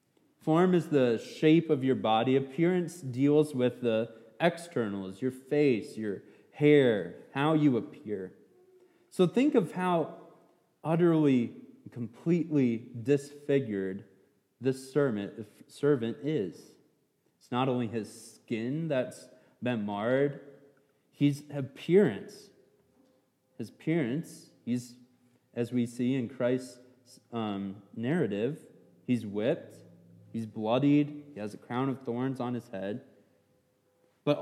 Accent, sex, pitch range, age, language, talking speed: American, male, 115-155 Hz, 30-49, English, 110 wpm